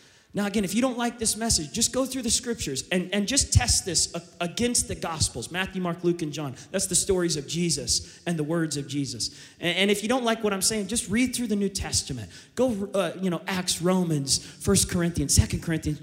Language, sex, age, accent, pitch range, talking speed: English, male, 30-49, American, 160-210 Hz, 225 wpm